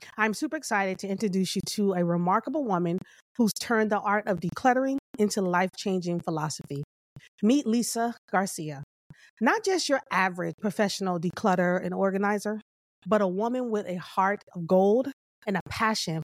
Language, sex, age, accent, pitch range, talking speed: English, female, 30-49, American, 180-235 Hz, 150 wpm